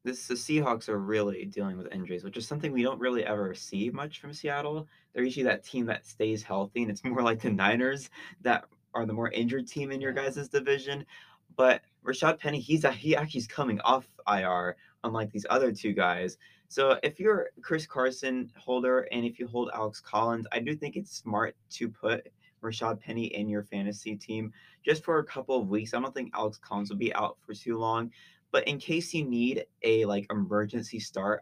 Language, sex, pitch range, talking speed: English, male, 105-130 Hz, 210 wpm